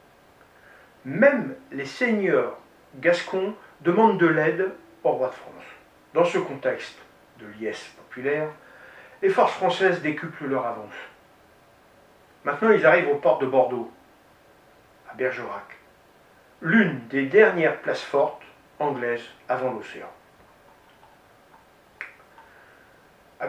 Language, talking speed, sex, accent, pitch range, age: French, 105 wpm, male, French, 140-210 Hz, 50-69